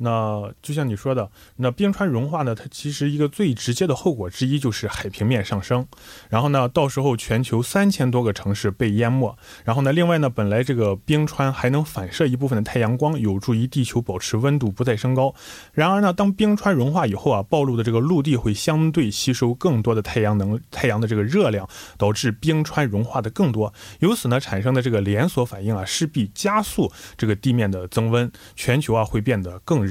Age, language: 20-39, Korean